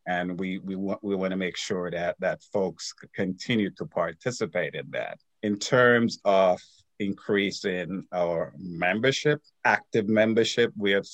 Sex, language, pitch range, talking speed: male, English, 95-110 Hz, 140 wpm